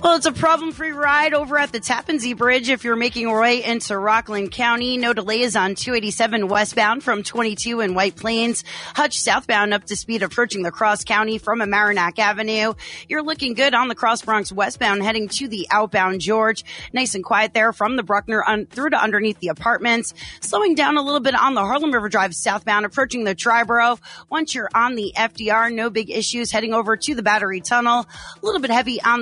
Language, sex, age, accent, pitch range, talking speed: English, female, 30-49, American, 210-255 Hz, 205 wpm